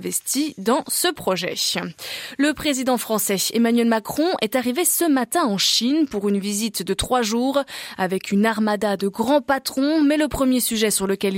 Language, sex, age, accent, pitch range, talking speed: French, female, 20-39, French, 200-265 Hz, 175 wpm